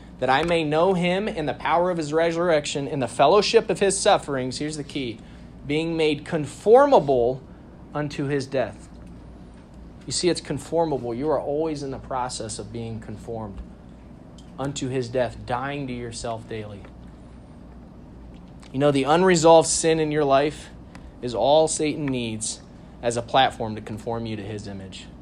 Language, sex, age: English, male, 30-49